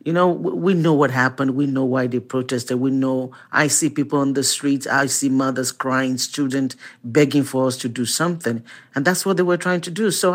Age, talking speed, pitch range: 50-69, 225 wpm, 120-160 Hz